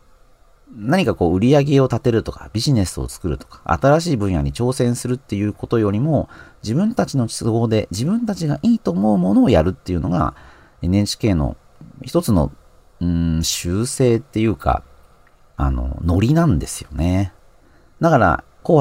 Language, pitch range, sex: Japanese, 80-135 Hz, male